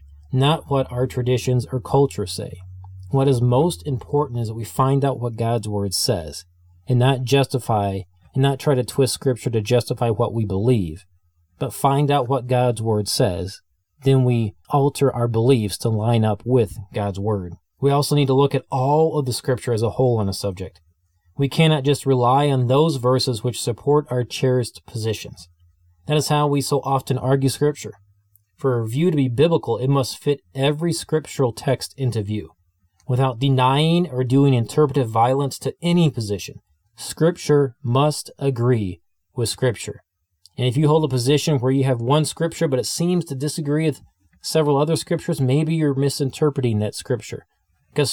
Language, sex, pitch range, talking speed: English, male, 105-140 Hz, 175 wpm